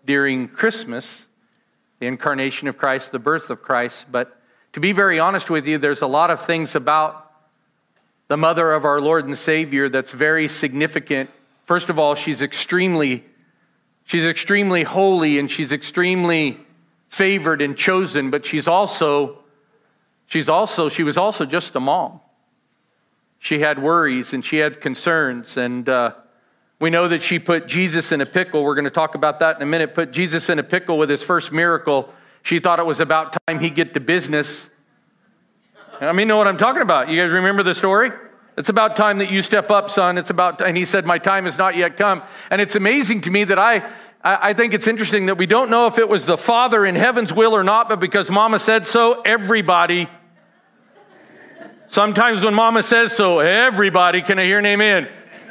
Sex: male